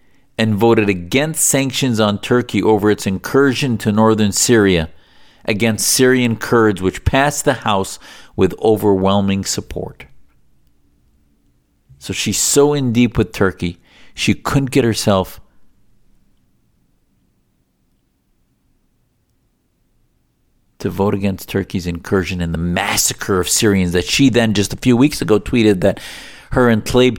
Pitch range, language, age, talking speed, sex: 90-125 Hz, English, 50-69, 125 wpm, male